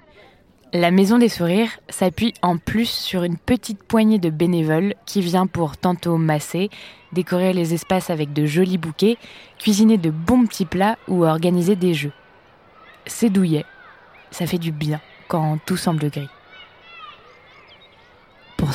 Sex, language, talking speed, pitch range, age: female, French, 145 wpm, 165-205 Hz, 20-39